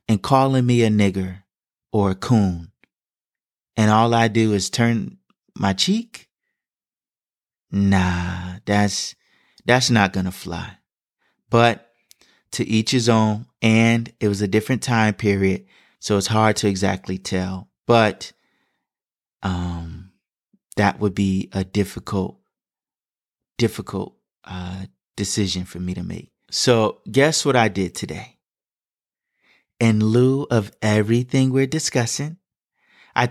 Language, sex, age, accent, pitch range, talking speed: English, male, 30-49, American, 95-120 Hz, 125 wpm